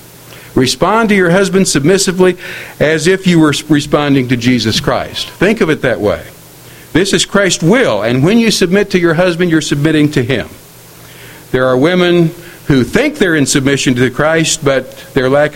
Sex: male